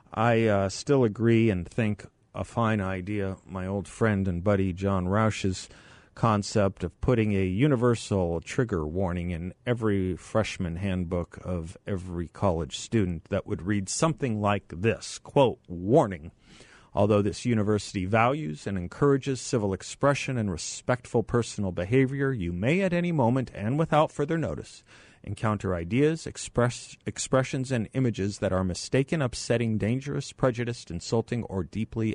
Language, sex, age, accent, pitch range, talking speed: English, male, 40-59, American, 95-120 Hz, 140 wpm